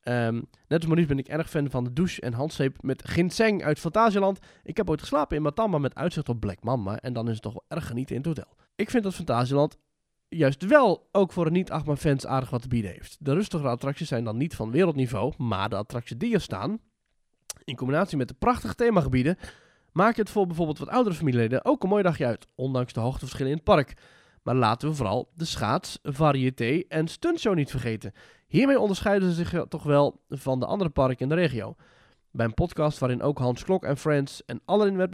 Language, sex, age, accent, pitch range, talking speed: Dutch, male, 20-39, Dutch, 125-175 Hz, 220 wpm